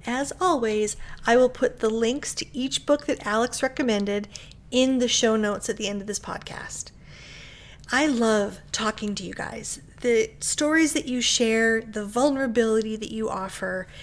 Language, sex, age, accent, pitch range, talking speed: English, female, 30-49, American, 215-265 Hz, 165 wpm